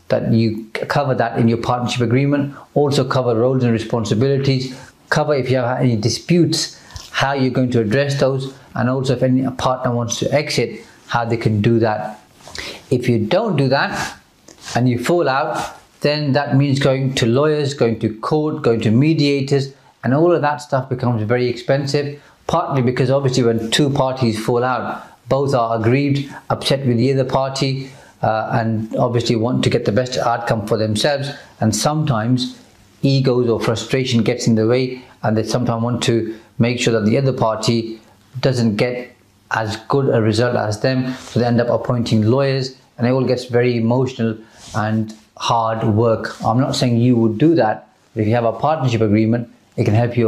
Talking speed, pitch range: 185 wpm, 115-135 Hz